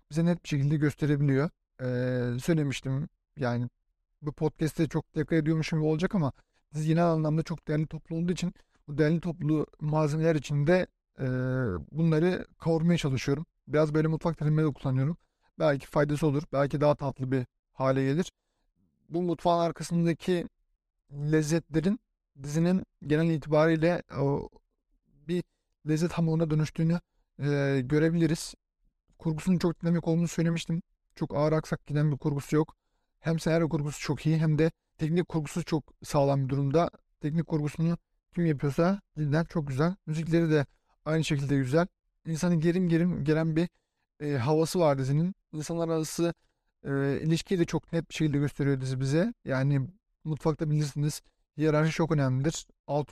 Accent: native